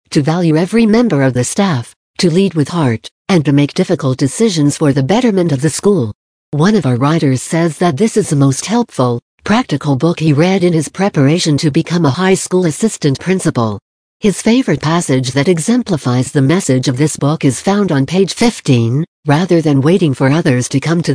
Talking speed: 200 wpm